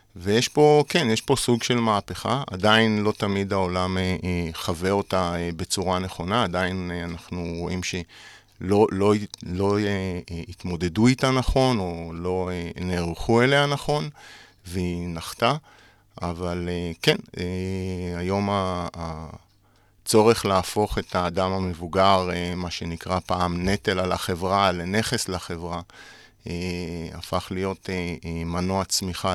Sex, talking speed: male, 125 wpm